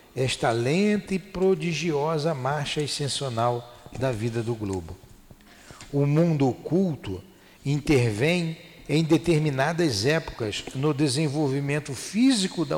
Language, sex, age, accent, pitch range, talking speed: Portuguese, male, 60-79, Brazilian, 130-170 Hz, 100 wpm